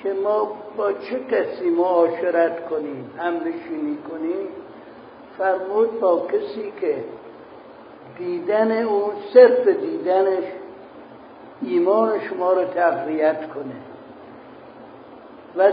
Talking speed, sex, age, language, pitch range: 90 wpm, male, 60-79, Persian, 170-225 Hz